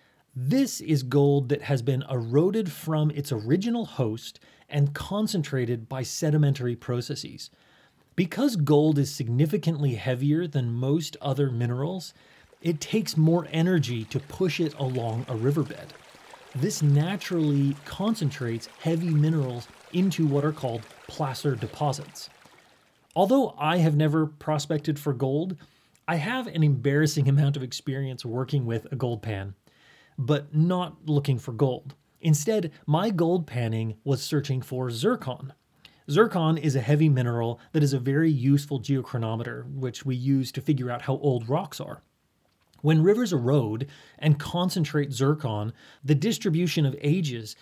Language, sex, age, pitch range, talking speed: English, male, 30-49, 130-160 Hz, 135 wpm